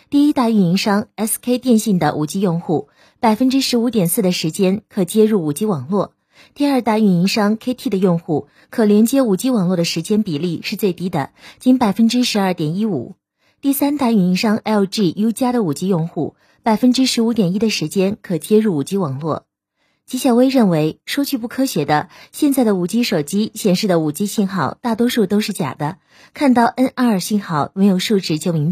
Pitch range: 175-235 Hz